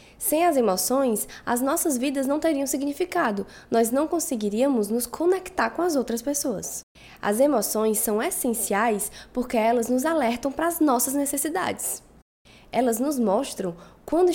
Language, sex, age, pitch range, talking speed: Portuguese, female, 10-29, 215-295 Hz, 140 wpm